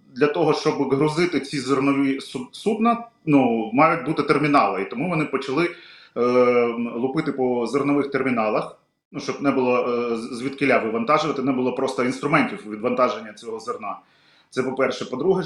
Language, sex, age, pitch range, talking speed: Ukrainian, male, 30-49, 130-155 Hz, 145 wpm